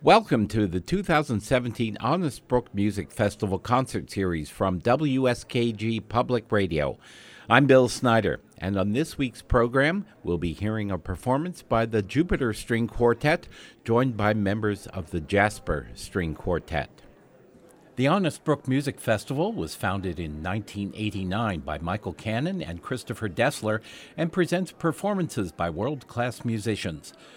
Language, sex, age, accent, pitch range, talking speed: English, male, 50-69, American, 90-125 Hz, 135 wpm